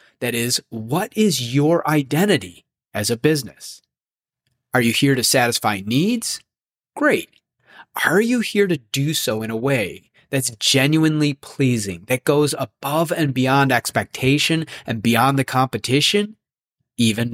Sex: male